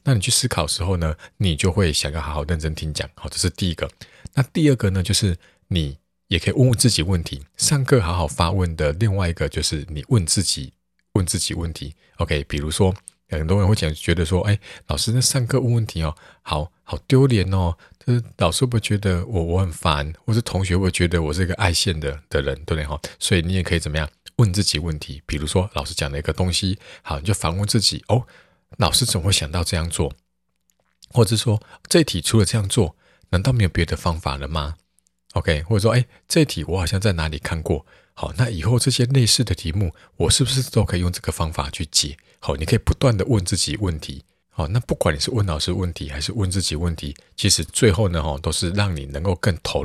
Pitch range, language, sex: 80-105 Hz, Chinese, male